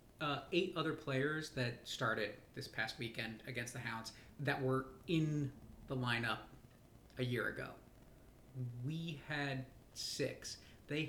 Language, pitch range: English, 120-145 Hz